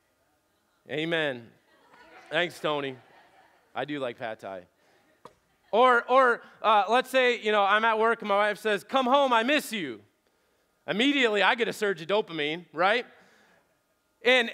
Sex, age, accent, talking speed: male, 30-49, American, 150 wpm